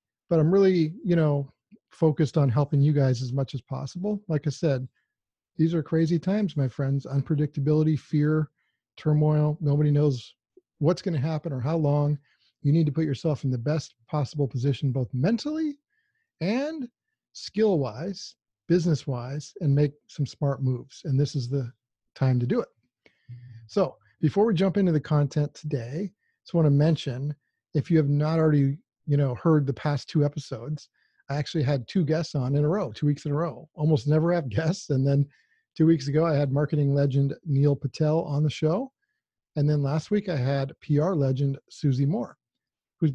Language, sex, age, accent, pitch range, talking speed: English, male, 40-59, American, 140-165 Hz, 185 wpm